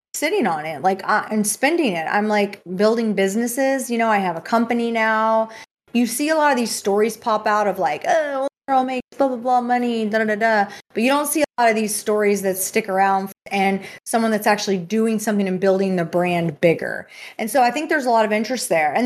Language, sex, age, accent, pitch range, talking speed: English, female, 20-39, American, 190-235 Hz, 235 wpm